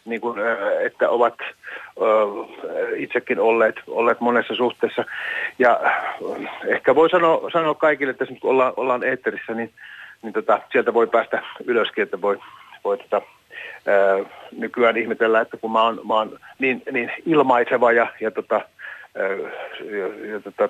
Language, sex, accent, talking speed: Finnish, male, native, 135 wpm